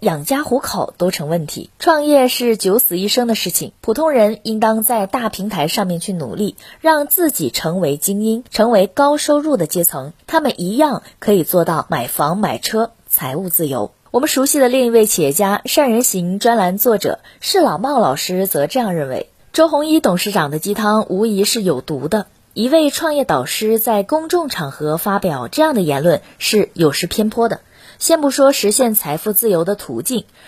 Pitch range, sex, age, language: 185-270 Hz, female, 20-39, Chinese